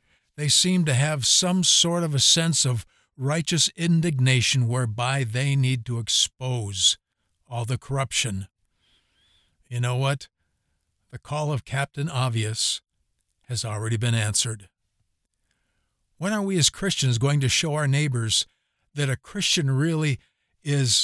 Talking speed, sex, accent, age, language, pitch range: 135 wpm, male, American, 60-79, English, 105-150 Hz